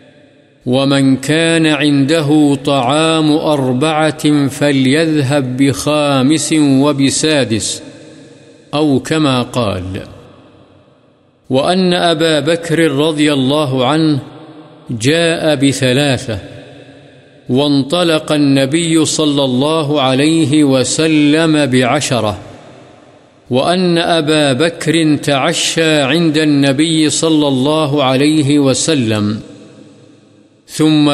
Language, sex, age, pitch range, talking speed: Urdu, male, 50-69, 140-160 Hz, 70 wpm